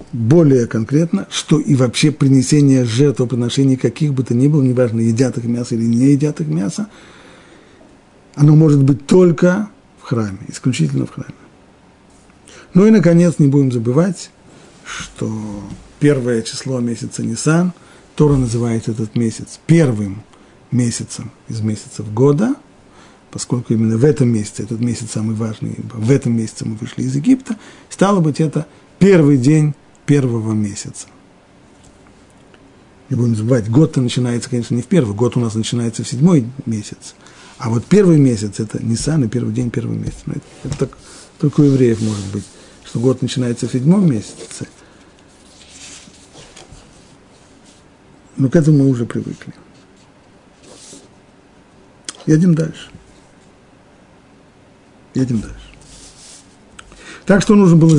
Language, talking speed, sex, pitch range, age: Russian, 135 wpm, male, 115-150 Hz, 40-59